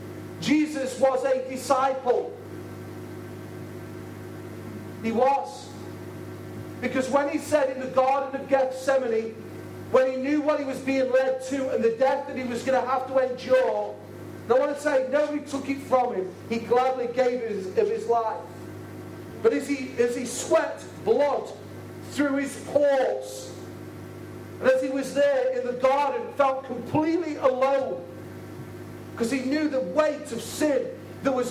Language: English